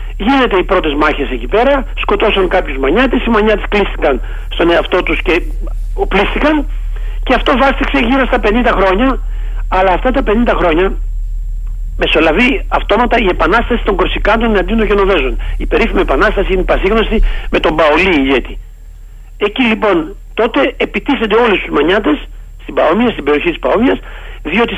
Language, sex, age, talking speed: Greek, male, 60-79, 150 wpm